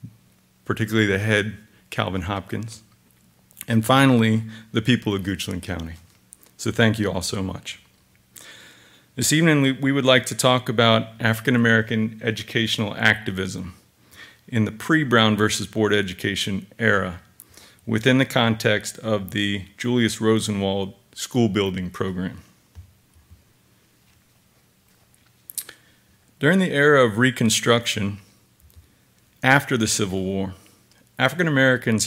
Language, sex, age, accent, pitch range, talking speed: English, male, 40-59, American, 100-120 Hz, 105 wpm